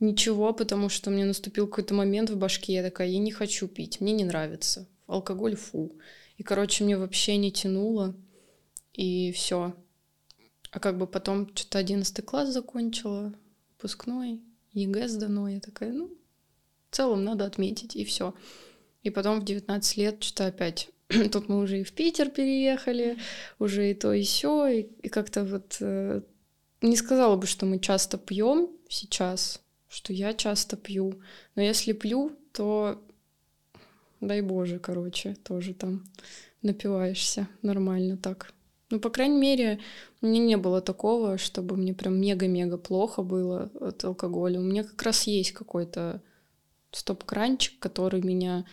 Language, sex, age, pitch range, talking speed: Russian, female, 20-39, 185-215 Hz, 150 wpm